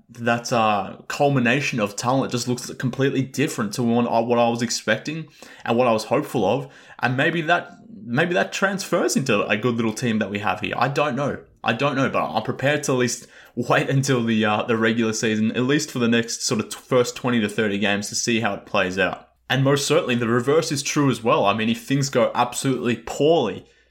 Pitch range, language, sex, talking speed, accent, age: 110-125 Hz, English, male, 225 wpm, Australian, 20-39